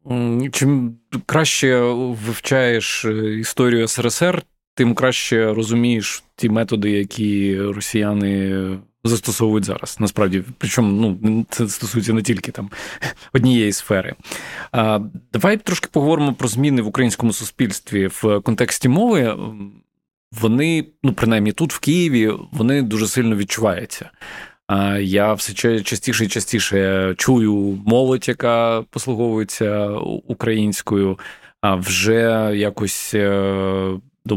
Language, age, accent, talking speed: Ukrainian, 20-39, native, 105 wpm